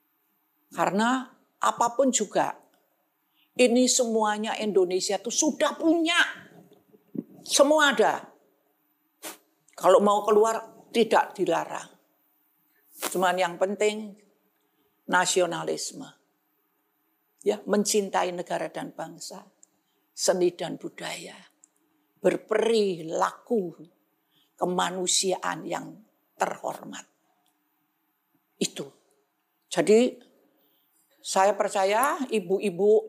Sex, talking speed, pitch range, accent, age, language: female, 65 wpm, 180-220 Hz, native, 50-69, Indonesian